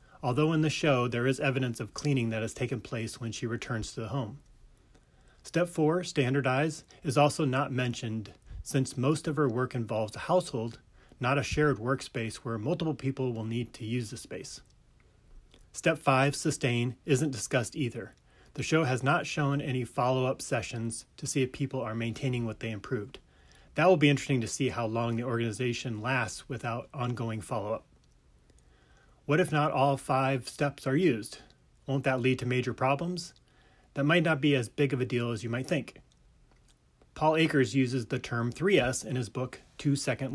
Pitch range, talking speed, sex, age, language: 115-140 Hz, 180 wpm, male, 30-49, English